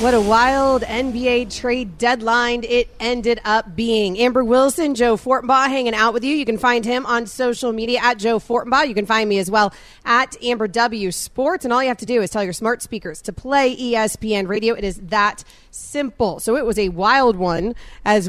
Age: 30-49